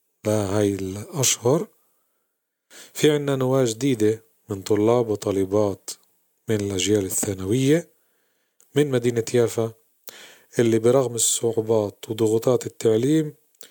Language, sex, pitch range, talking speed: Arabic, male, 105-120 Hz, 90 wpm